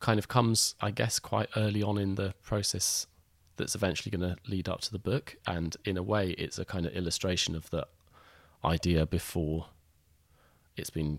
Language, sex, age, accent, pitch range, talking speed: English, male, 30-49, British, 80-105 Hz, 190 wpm